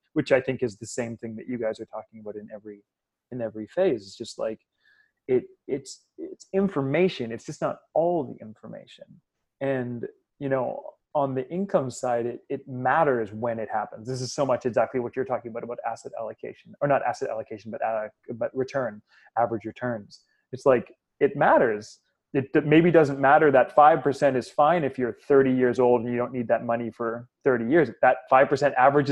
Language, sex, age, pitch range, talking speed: English, male, 20-39, 115-135 Hz, 200 wpm